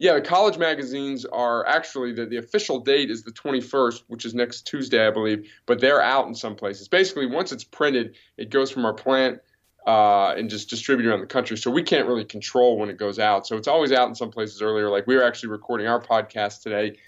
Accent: American